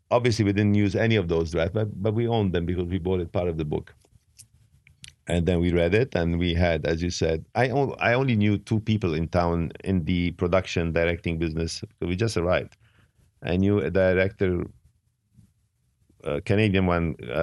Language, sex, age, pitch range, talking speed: English, male, 50-69, 85-105 Hz, 195 wpm